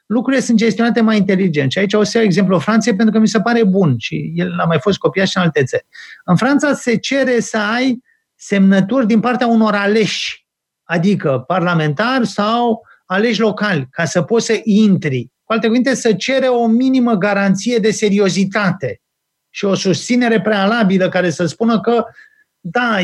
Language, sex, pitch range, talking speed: Romanian, male, 180-235 Hz, 175 wpm